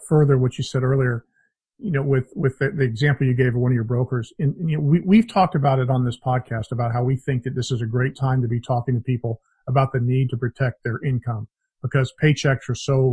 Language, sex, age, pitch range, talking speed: English, male, 40-59, 125-145 Hz, 260 wpm